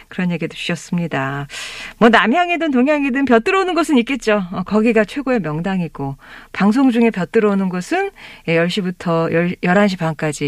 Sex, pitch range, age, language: female, 175-270 Hz, 40-59, Korean